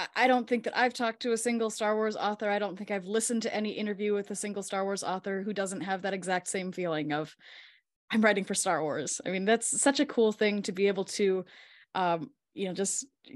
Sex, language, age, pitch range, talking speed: female, English, 10-29, 190-230 Hz, 245 wpm